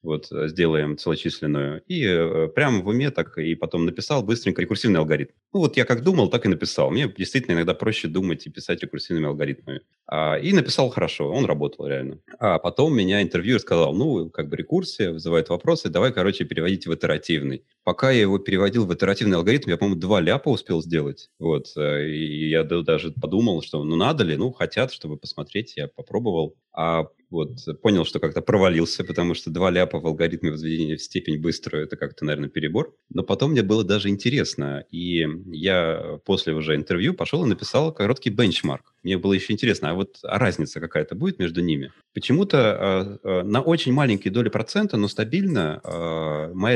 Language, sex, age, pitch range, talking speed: Russian, male, 30-49, 80-115 Hz, 180 wpm